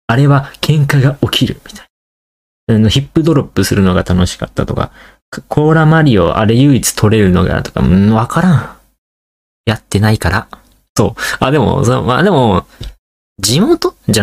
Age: 20-39